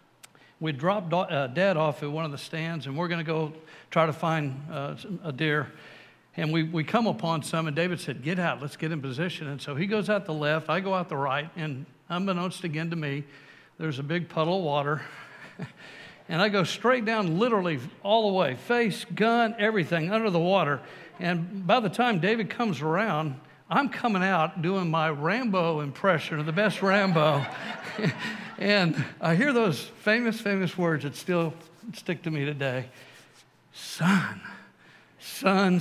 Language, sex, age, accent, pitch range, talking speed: English, male, 60-79, American, 145-185 Hz, 180 wpm